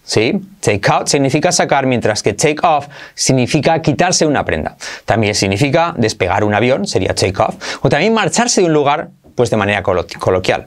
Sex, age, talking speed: male, 30-49, 175 wpm